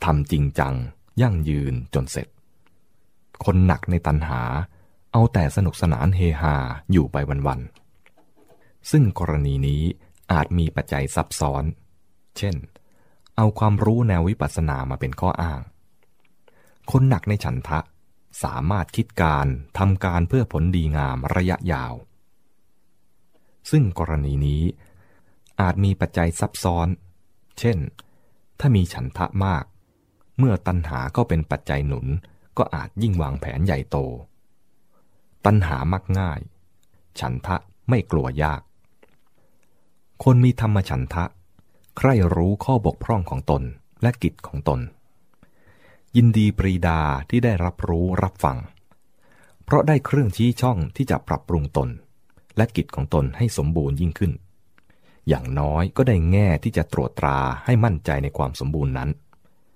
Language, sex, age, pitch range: English, male, 20-39, 75-100 Hz